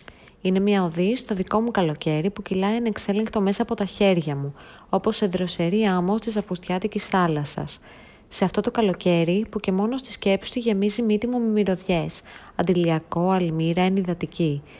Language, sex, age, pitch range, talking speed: Greek, female, 20-39, 170-220 Hz, 160 wpm